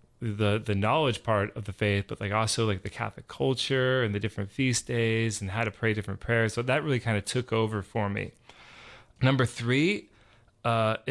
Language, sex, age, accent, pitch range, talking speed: English, male, 30-49, American, 110-130 Hz, 200 wpm